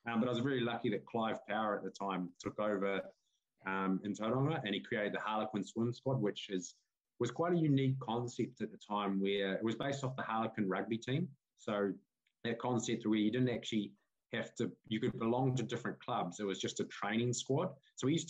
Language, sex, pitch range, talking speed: English, male, 95-120 Hz, 225 wpm